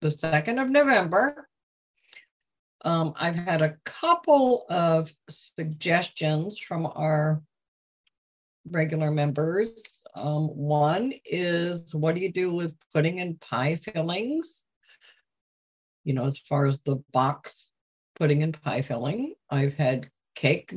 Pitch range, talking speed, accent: 150-200 Hz, 120 wpm, American